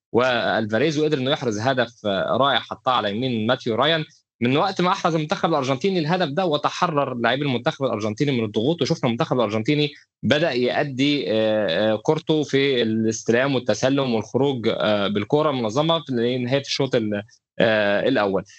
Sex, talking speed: male, 130 wpm